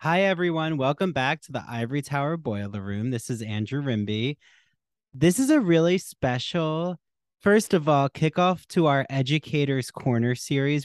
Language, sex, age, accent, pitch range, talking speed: English, male, 30-49, American, 125-170 Hz, 155 wpm